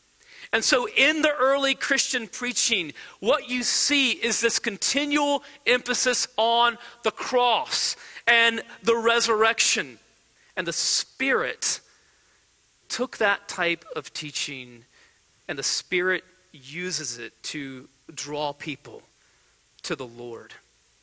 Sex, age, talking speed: male, 40-59, 110 wpm